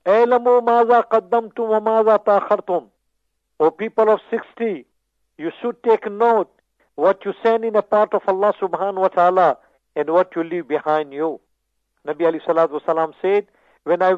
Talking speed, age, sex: 150 wpm, 50-69, male